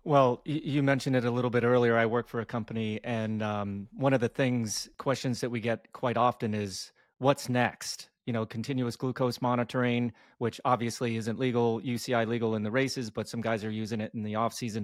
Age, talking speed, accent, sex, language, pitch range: 30-49, 210 wpm, American, male, English, 115-140 Hz